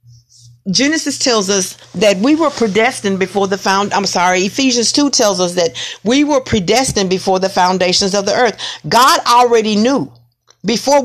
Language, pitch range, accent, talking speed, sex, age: English, 185-270 Hz, American, 165 wpm, female, 50-69